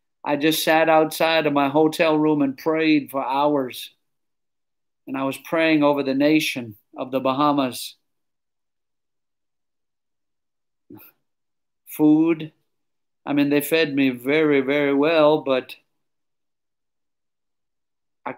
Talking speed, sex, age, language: 110 wpm, male, 50-69, English